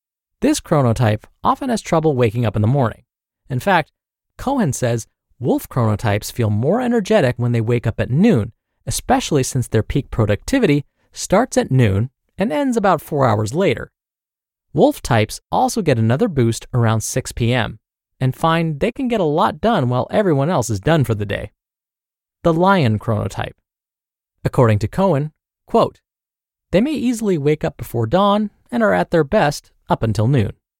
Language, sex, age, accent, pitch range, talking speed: English, male, 20-39, American, 115-180 Hz, 170 wpm